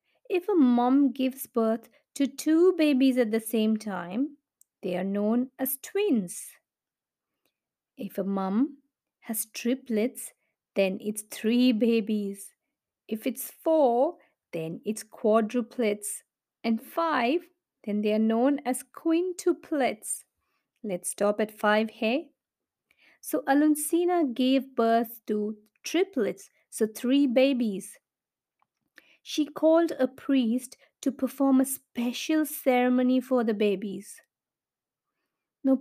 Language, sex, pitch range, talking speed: English, female, 220-275 Hz, 110 wpm